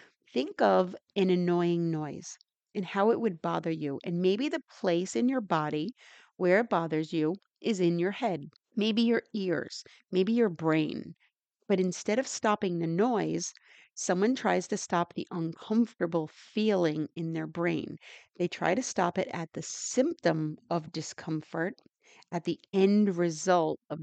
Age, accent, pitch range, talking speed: 40-59, American, 165-205 Hz, 155 wpm